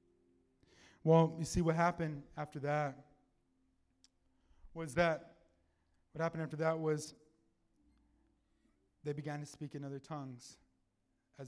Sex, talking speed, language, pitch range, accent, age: male, 115 wpm, English, 95-140 Hz, American, 20-39